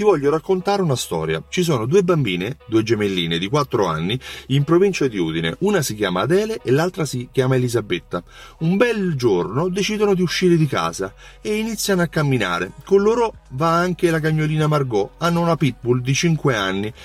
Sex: male